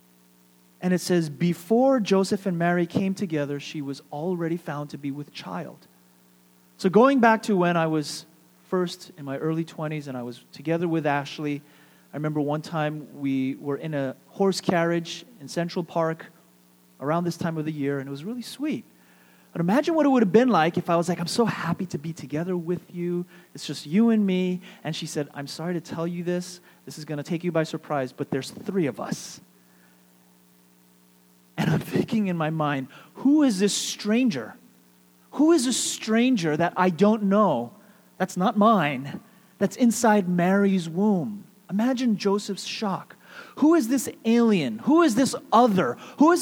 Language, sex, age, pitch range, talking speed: English, male, 30-49, 150-225 Hz, 185 wpm